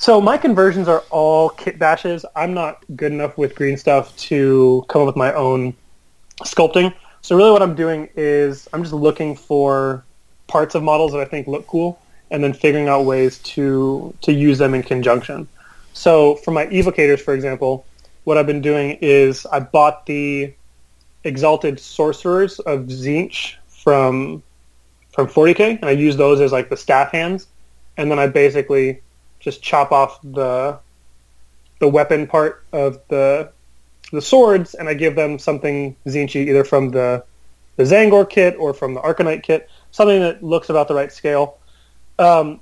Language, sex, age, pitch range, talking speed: English, male, 30-49, 130-155 Hz, 170 wpm